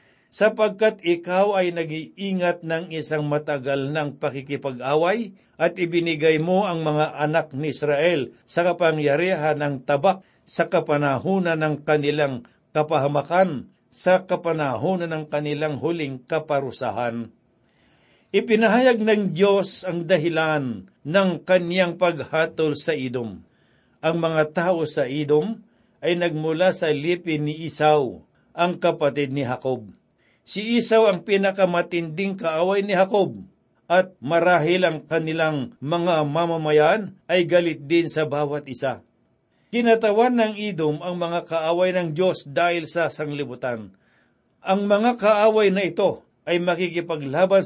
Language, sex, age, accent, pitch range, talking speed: Filipino, male, 60-79, native, 150-185 Hz, 120 wpm